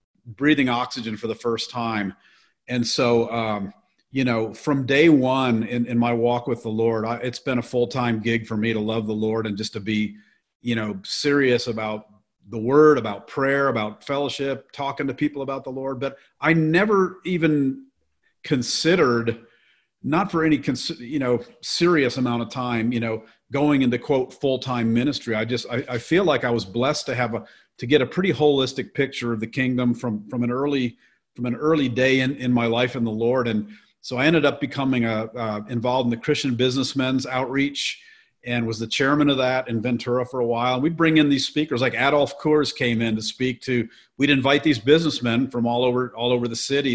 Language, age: English, 40-59